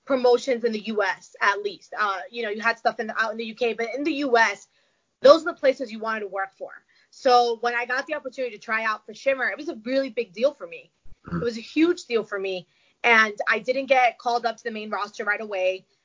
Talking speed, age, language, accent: 260 wpm, 20-39, English, American